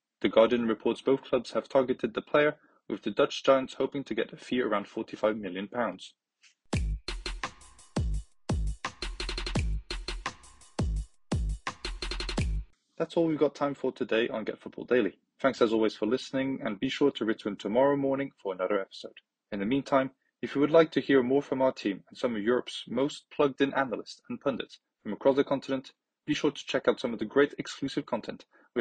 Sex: male